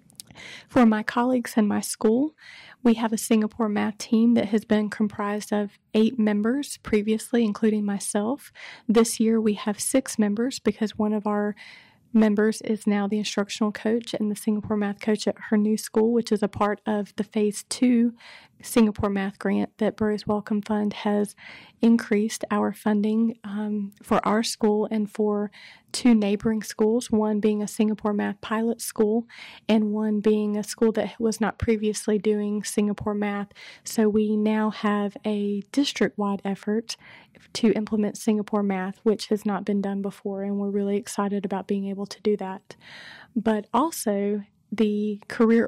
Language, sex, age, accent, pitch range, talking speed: English, female, 30-49, American, 205-225 Hz, 165 wpm